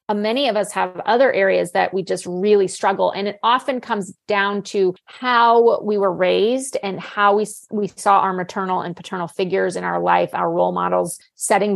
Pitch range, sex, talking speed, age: 195-230 Hz, female, 195 wpm, 30-49